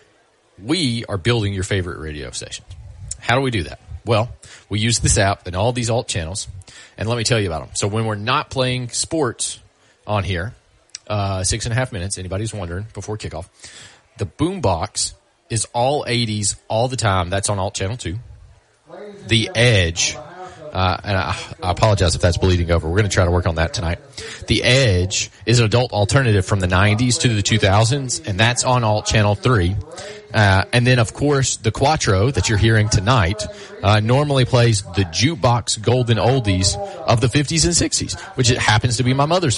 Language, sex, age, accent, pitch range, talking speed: English, male, 30-49, American, 95-120 Hz, 195 wpm